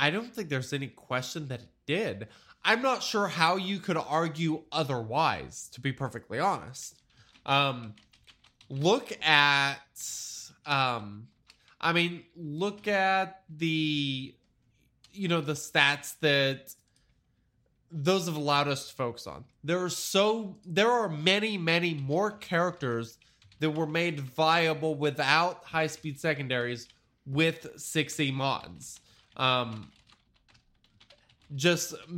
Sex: male